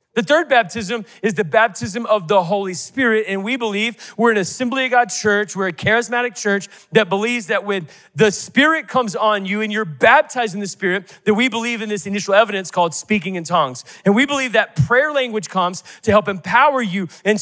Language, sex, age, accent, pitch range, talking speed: English, male, 30-49, American, 185-240 Hz, 210 wpm